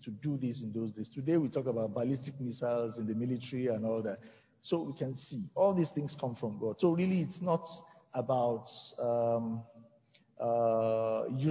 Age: 50-69